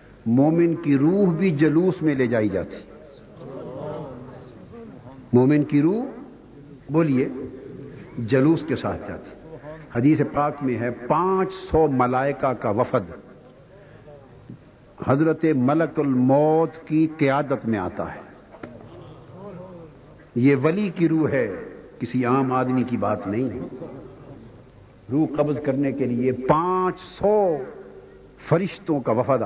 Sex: male